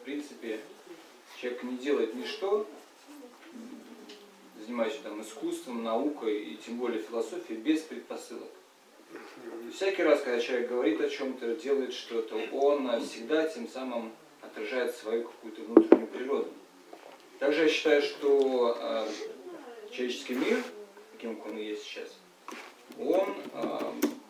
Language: English